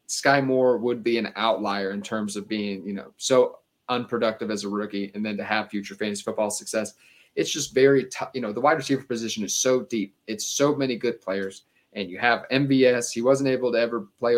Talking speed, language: 220 wpm, English